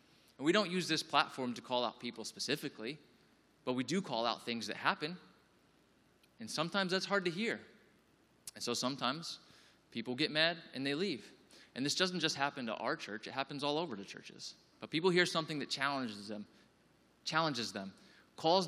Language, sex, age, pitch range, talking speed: English, male, 20-39, 115-155 Hz, 185 wpm